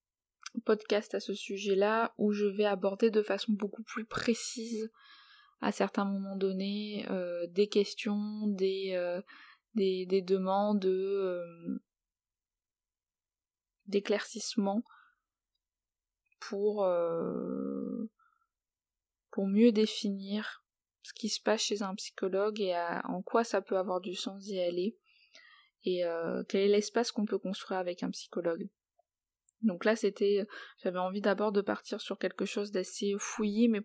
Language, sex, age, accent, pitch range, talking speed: French, female, 20-39, French, 185-215 Hz, 125 wpm